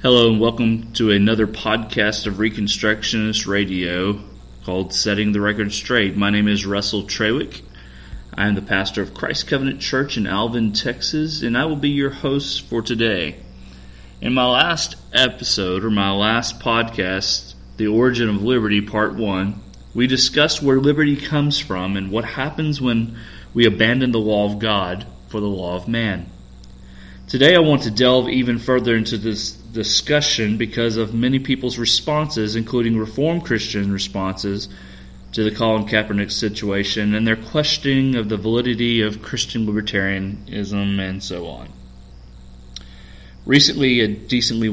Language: English